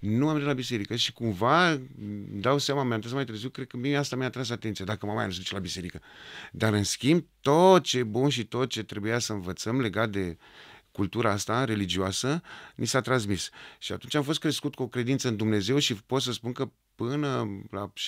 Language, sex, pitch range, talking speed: Romanian, male, 105-135 Hz, 210 wpm